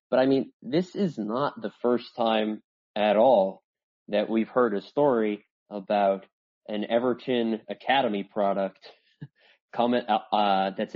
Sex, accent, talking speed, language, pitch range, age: male, American, 135 wpm, English, 105-125 Hz, 20-39